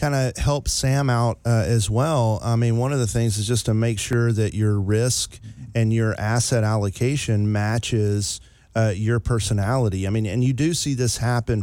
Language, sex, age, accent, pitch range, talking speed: English, male, 40-59, American, 105-120 Hz, 190 wpm